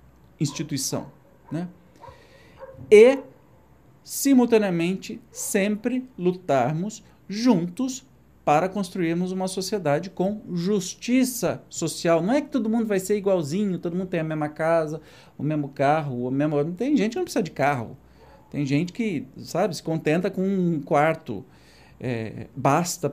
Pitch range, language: 150-220 Hz, Portuguese